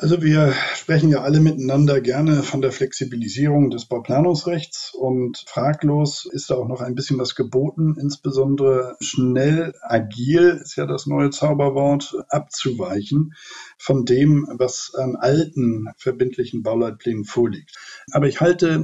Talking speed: 135 wpm